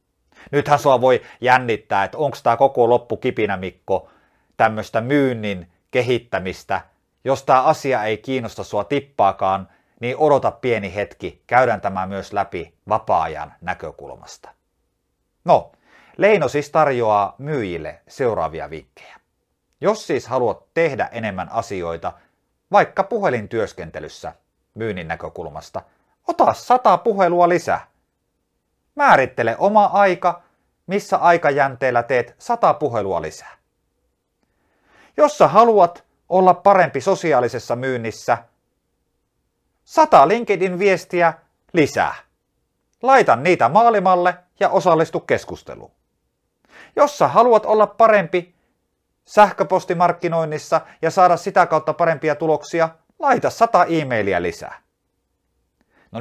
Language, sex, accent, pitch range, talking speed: Finnish, male, native, 120-190 Hz, 100 wpm